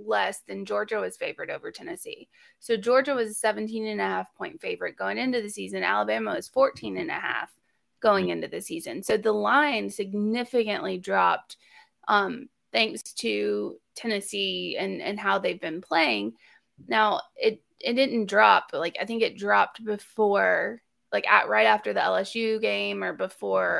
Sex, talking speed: female, 170 wpm